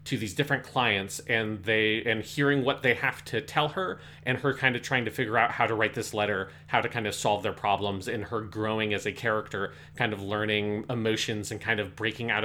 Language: English